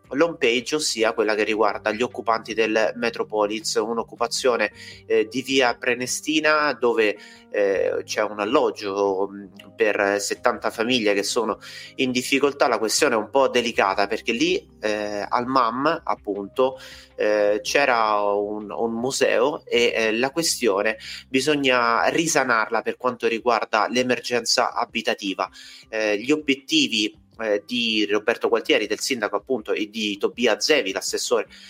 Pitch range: 105-130 Hz